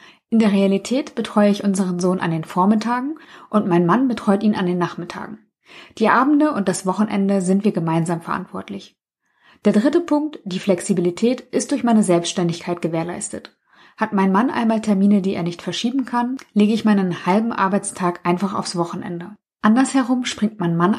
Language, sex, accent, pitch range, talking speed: German, female, German, 175-220 Hz, 170 wpm